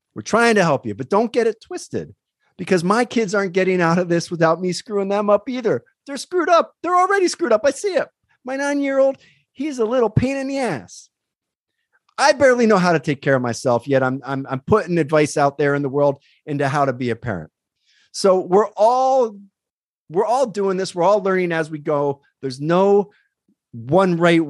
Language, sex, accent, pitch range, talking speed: English, male, American, 140-210 Hz, 210 wpm